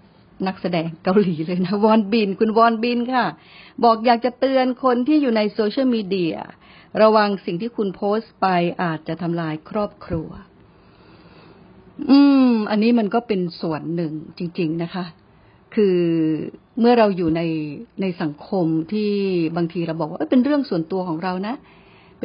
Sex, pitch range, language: female, 175-230 Hz, Thai